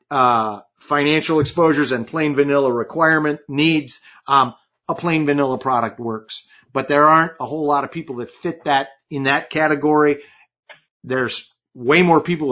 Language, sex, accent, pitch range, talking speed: English, male, American, 120-155 Hz, 155 wpm